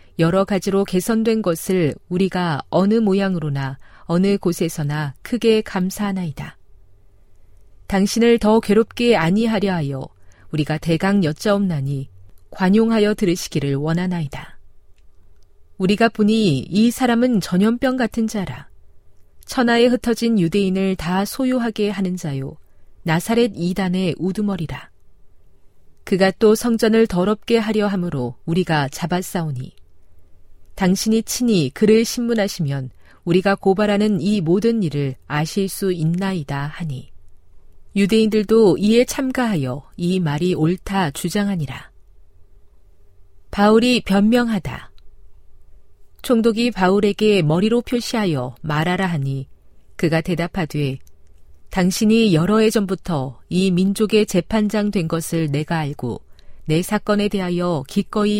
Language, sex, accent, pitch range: Korean, female, native, 135-210 Hz